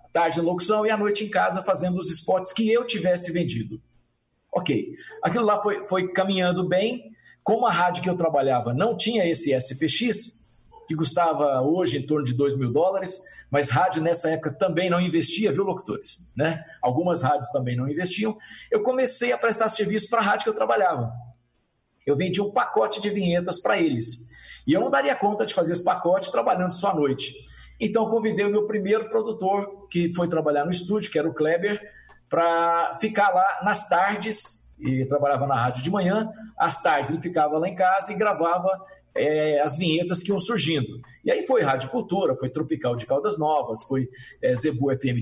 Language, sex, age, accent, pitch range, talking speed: Portuguese, male, 50-69, Brazilian, 150-210 Hz, 190 wpm